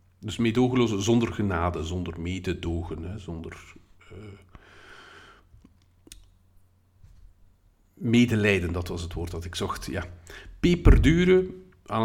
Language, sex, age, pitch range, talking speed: Dutch, male, 50-69, 90-120 Hz, 95 wpm